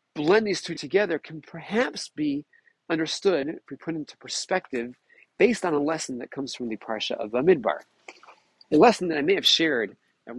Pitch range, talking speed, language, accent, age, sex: 140-195 Hz, 185 wpm, English, American, 40-59, male